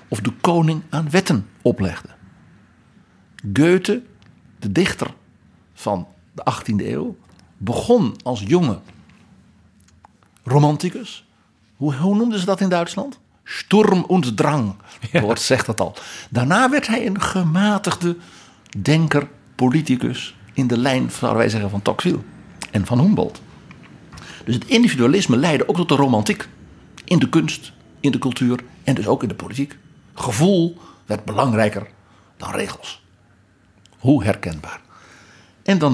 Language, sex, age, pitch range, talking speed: Dutch, male, 60-79, 110-170 Hz, 120 wpm